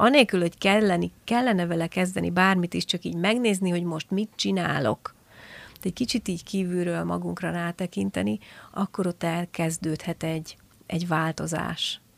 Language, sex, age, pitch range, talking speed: Hungarian, female, 30-49, 160-190 Hz, 140 wpm